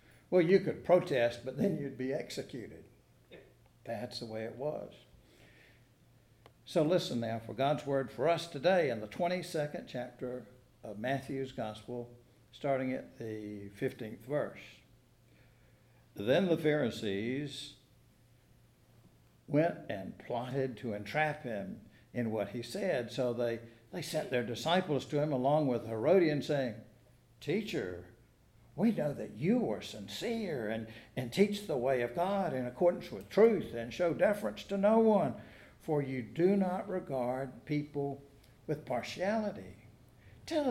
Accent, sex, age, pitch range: American, male, 60-79, 120-170 Hz